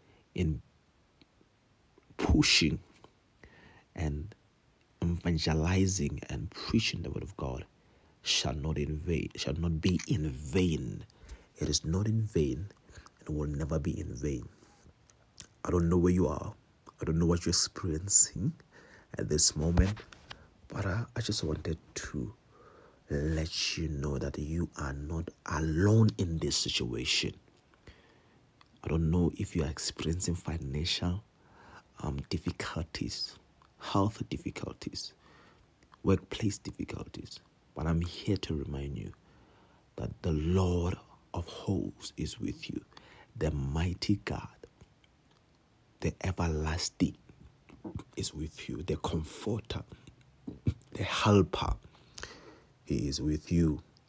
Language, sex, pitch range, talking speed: English, male, 75-95 Hz, 115 wpm